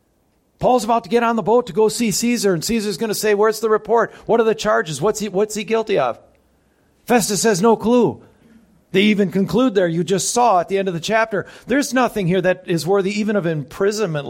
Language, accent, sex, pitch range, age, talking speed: English, American, male, 125-210 Hz, 50-69, 225 wpm